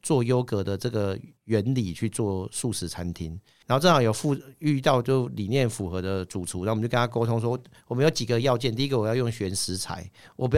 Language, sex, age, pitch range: Chinese, male, 50-69, 110-150 Hz